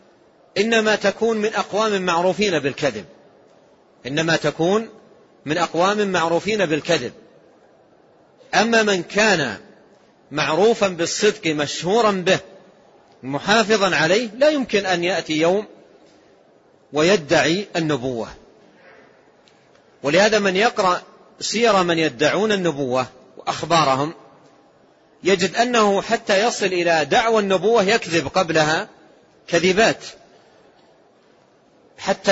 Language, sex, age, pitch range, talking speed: Arabic, male, 40-59, 160-200 Hz, 85 wpm